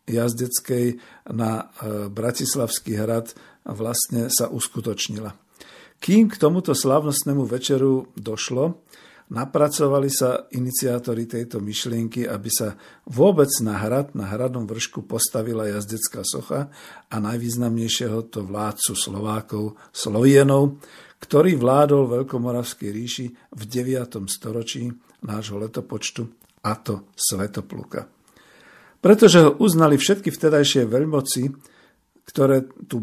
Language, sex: Slovak, male